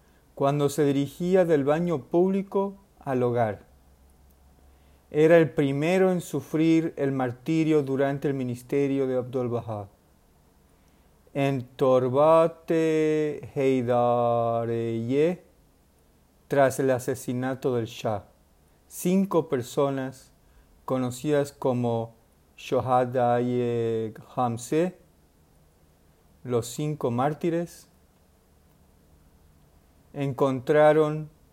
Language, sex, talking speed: Spanish, male, 70 wpm